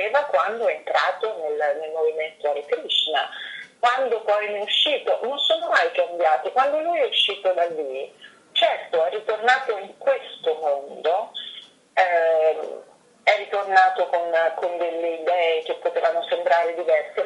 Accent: native